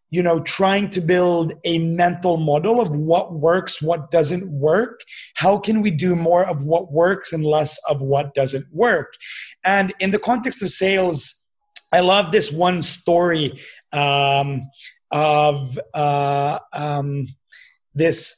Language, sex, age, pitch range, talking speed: Swedish, male, 30-49, 155-200 Hz, 145 wpm